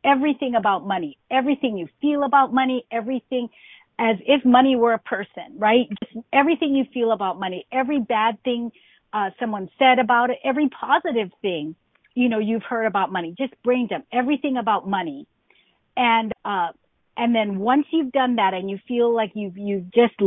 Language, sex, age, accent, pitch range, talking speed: English, female, 50-69, American, 195-245 Hz, 180 wpm